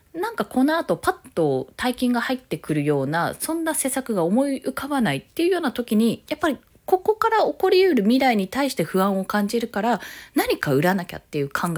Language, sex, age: Japanese, female, 20-39